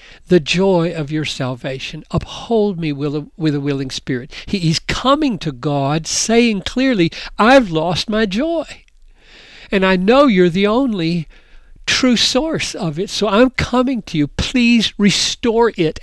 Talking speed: 145 wpm